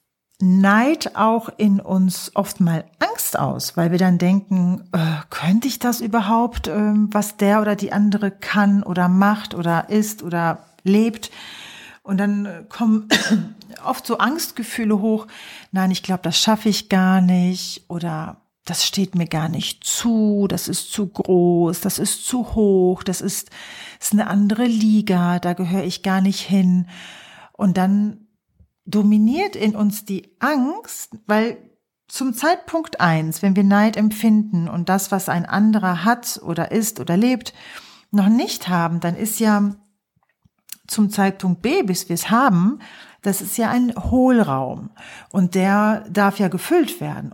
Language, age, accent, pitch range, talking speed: German, 40-59, German, 180-215 Hz, 150 wpm